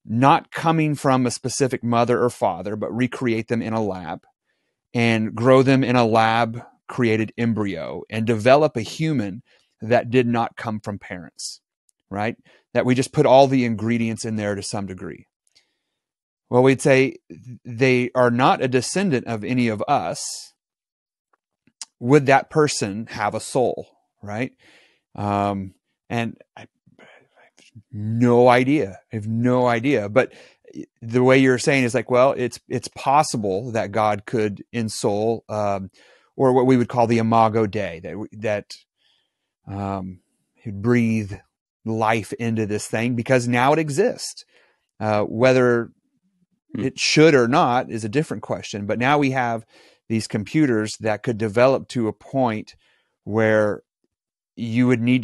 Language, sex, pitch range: English, male, 110-130 Hz